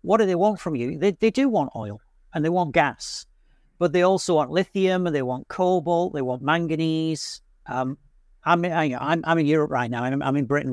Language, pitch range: English, 135-175 Hz